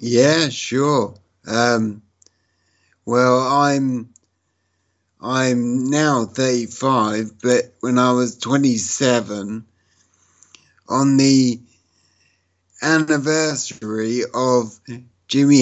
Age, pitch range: 60-79, 100-130 Hz